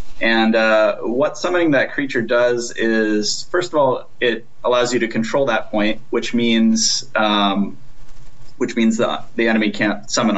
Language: English